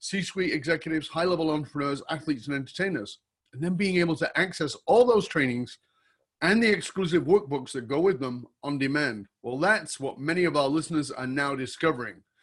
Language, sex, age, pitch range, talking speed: English, male, 30-49, 125-170 Hz, 175 wpm